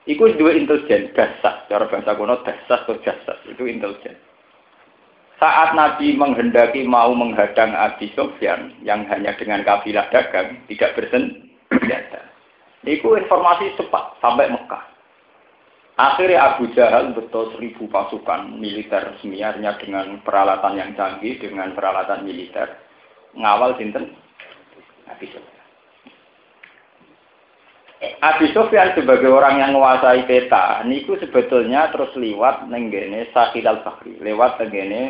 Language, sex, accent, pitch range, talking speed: Indonesian, male, native, 110-170 Hz, 110 wpm